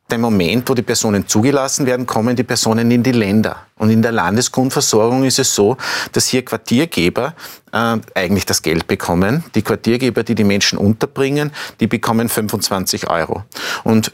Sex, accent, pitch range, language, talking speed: male, Austrian, 100-120 Hz, German, 165 wpm